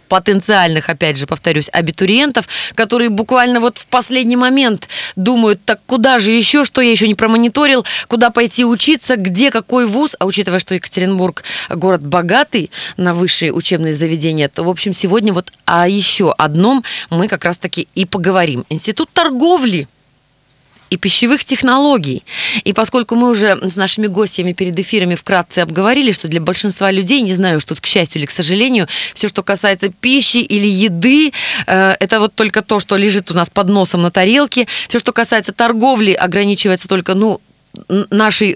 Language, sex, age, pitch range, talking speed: Russian, female, 20-39, 175-230 Hz, 165 wpm